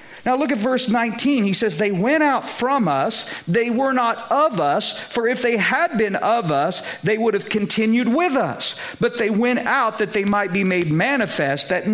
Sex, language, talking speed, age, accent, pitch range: male, English, 205 wpm, 50-69, American, 170-240 Hz